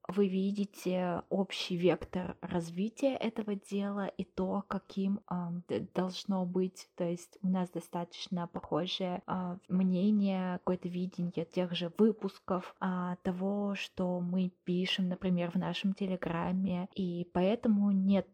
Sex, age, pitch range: female, 20-39, 175-200 Hz